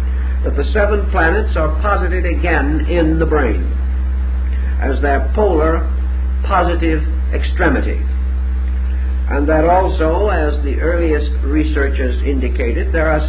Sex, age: male, 50-69